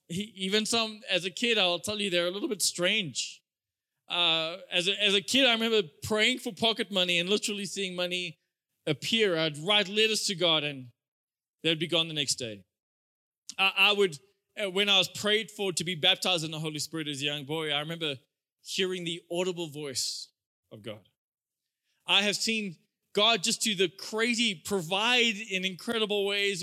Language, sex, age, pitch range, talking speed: English, male, 20-39, 160-210 Hz, 185 wpm